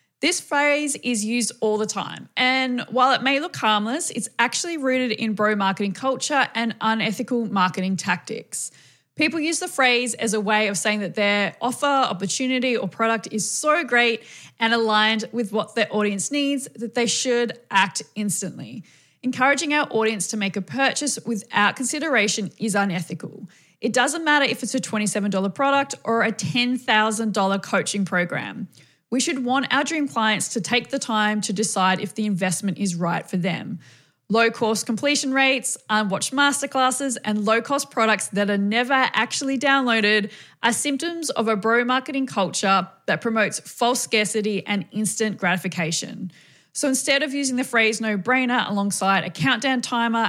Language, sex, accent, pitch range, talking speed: English, female, Australian, 200-255 Hz, 160 wpm